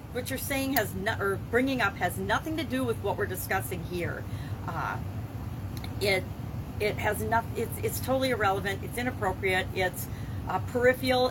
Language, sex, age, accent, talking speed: English, female, 40-59, American, 165 wpm